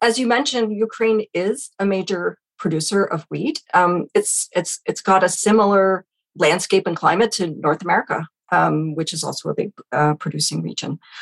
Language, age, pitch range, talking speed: English, 40-59, 165-220 Hz, 165 wpm